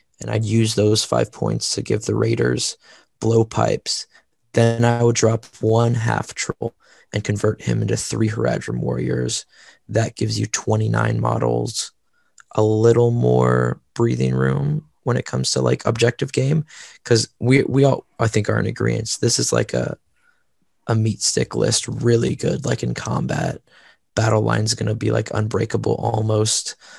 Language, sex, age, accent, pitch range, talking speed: English, male, 20-39, American, 105-115 Hz, 160 wpm